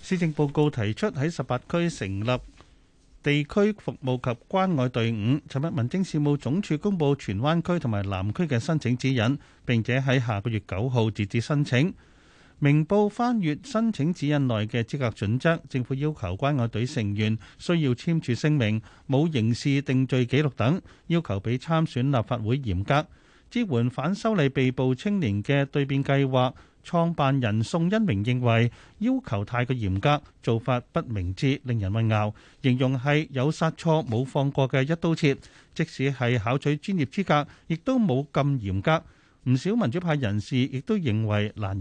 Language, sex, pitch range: Chinese, male, 115-160 Hz